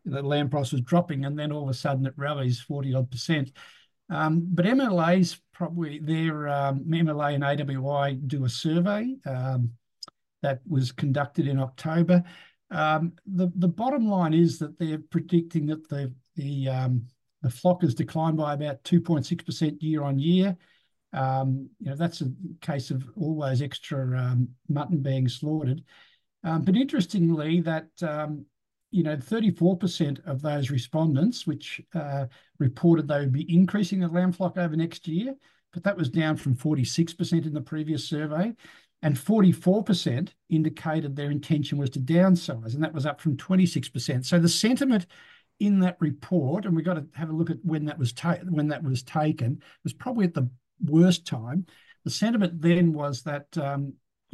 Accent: Australian